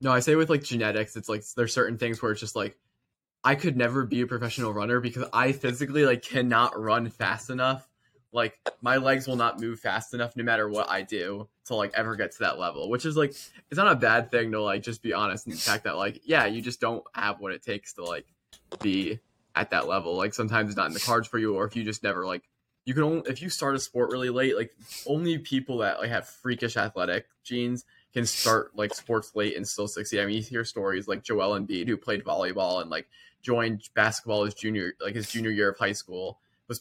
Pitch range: 110-125 Hz